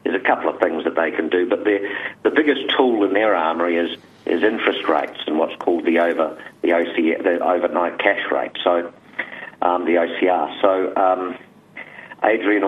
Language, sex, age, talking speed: English, male, 50-69, 185 wpm